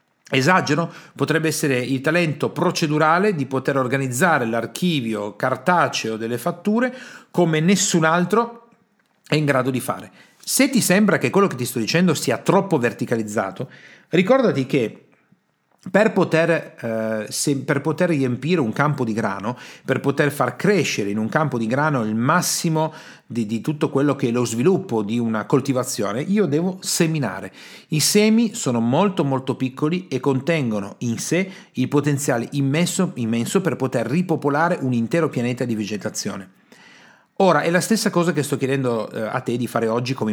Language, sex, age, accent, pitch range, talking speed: Italian, male, 40-59, native, 125-180 Hz, 155 wpm